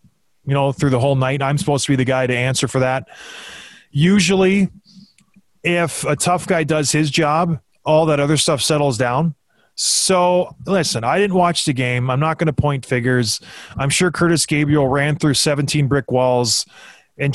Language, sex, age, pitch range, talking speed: English, male, 30-49, 140-175 Hz, 185 wpm